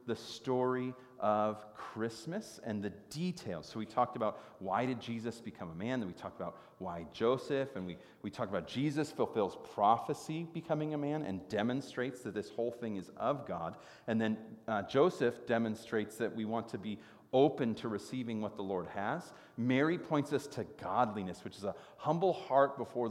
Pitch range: 110-135 Hz